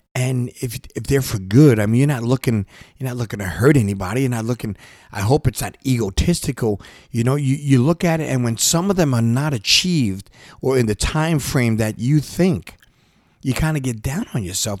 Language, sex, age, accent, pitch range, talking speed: English, male, 40-59, American, 100-130 Hz, 225 wpm